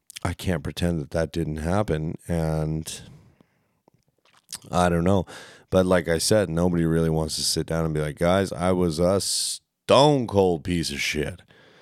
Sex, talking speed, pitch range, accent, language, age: male, 170 wpm, 80-95 Hz, American, English, 30-49